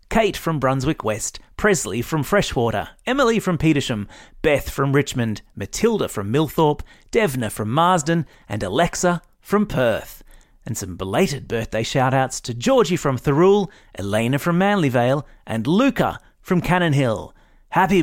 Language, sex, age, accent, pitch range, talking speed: English, male, 30-49, Australian, 115-175 Hz, 135 wpm